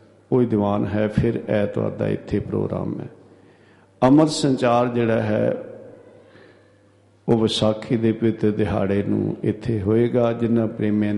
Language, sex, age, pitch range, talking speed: Punjabi, male, 50-69, 105-120 Hz, 120 wpm